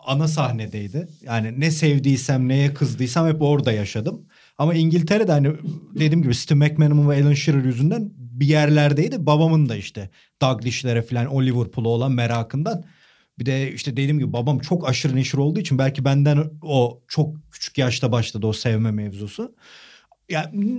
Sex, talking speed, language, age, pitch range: male, 155 wpm, Turkish, 40-59, 130-185 Hz